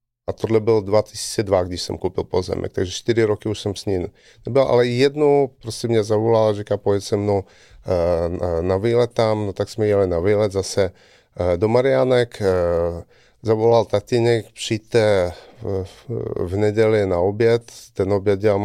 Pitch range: 100-115 Hz